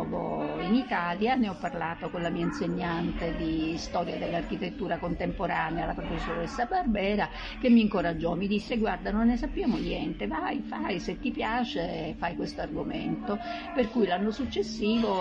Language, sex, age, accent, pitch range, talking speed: Italian, female, 50-69, native, 175-225 Hz, 150 wpm